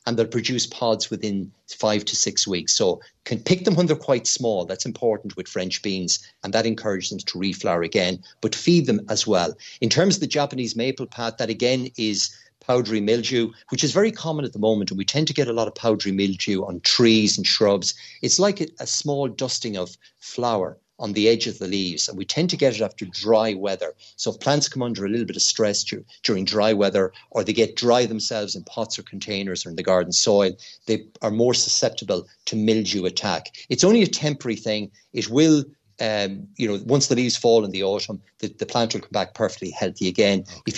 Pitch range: 100-125 Hz